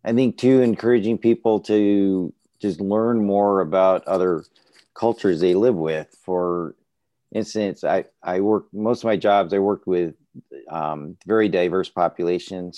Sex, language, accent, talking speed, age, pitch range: male, English, American, 145 wpm, 40-59, 85-100 Hz